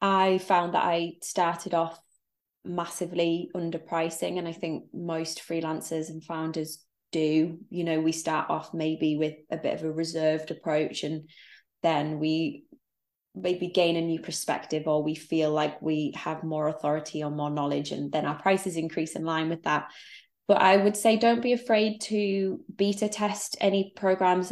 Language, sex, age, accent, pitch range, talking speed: English, female, 20-39, British, 160-185 Hz, 170 wpm